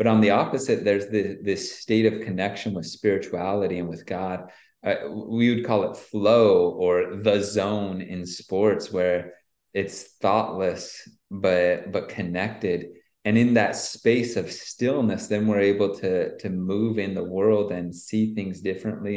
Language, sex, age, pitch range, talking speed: English, male, 30-49, 95-115 Hz, 160 wpm